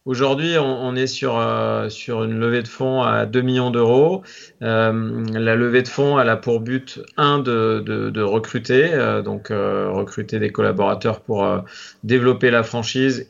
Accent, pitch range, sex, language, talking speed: French, 105-125 Hz, male, French, 180 wpm